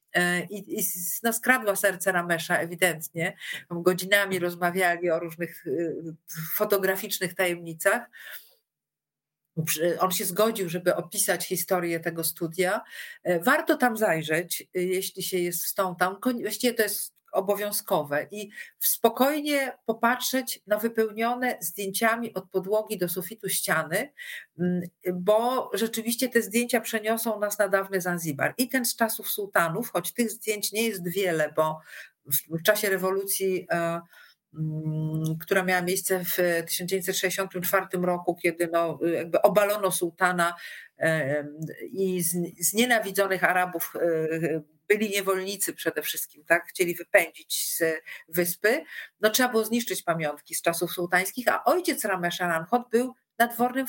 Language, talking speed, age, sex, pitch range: Polish, 120 wpm, 50-69, female, 170-215 Hz